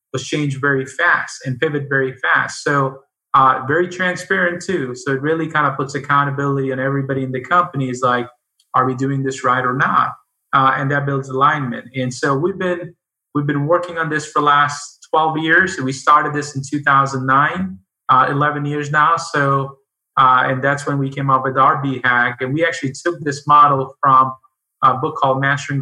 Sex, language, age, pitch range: male, English, 30-49, 130-145 Hz